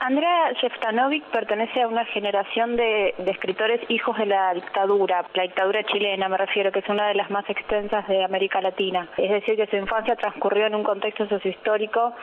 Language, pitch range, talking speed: Spanish, 190-220 Hz, 185 wpm